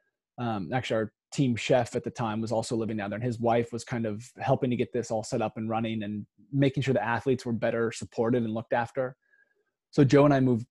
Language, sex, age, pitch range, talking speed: English, male, 20-39, 110-130 Hz, 245 wpm